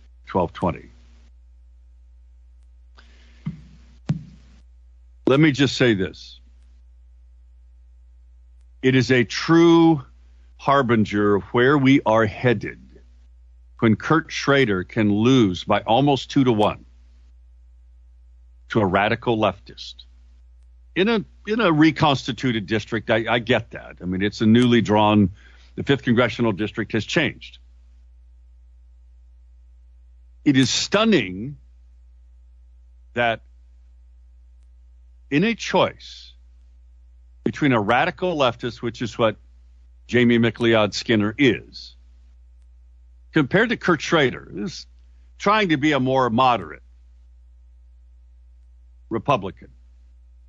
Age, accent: 60-79, American